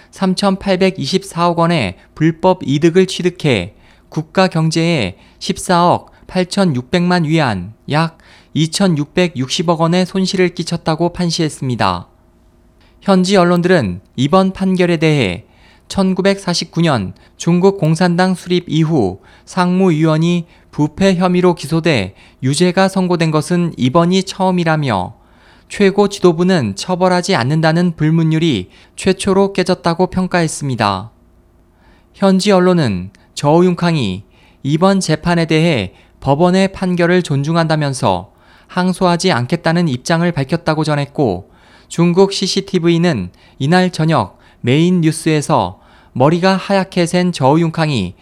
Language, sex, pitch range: Korean, male, 125-180 Hz